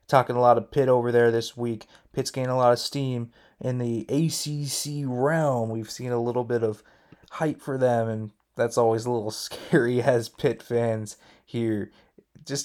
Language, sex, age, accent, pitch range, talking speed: English, male, 20-39, American, 115-150 Hz, 185 wpm